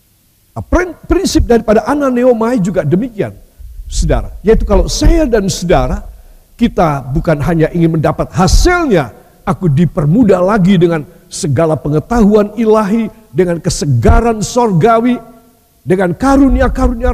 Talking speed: 105 wpm